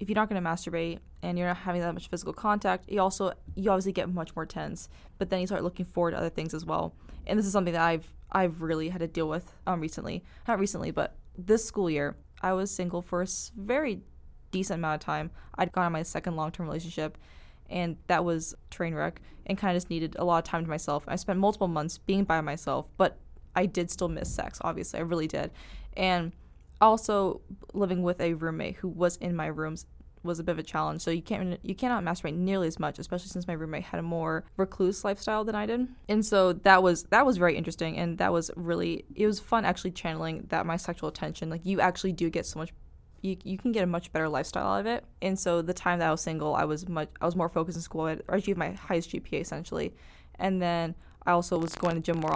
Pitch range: 160-190 Hz